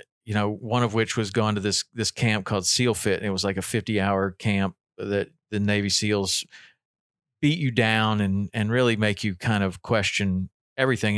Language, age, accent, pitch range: English, 40-59, American, 100-125 Hz